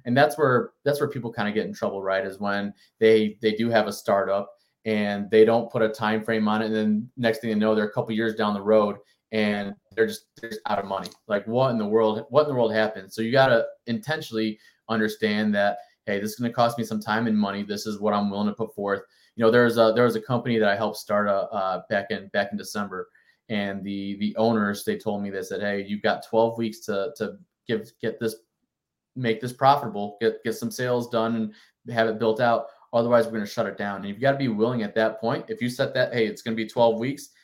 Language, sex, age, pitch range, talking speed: English, male, 30-49, 105-120 Hz, 265 wpm